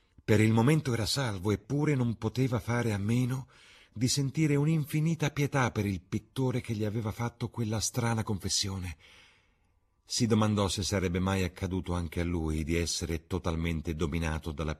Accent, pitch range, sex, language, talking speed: native, 80-110 Hz, male, Italian, 160 wpm